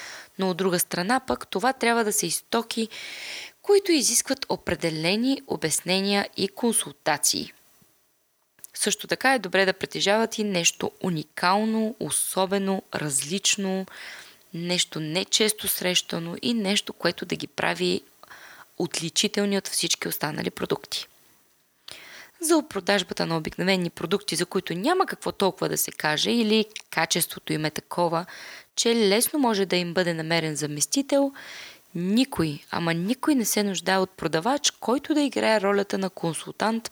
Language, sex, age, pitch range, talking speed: Bulgarian, female, 20-39, 180-230 Hz, 130 wpm